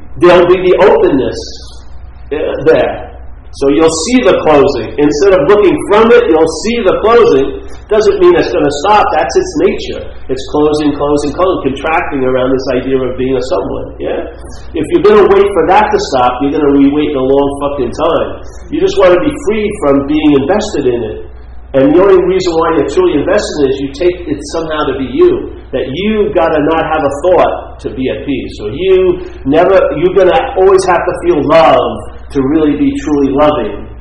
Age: 40-59